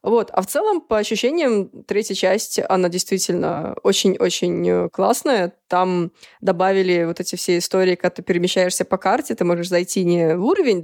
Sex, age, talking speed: female, 20-39, 160 wpm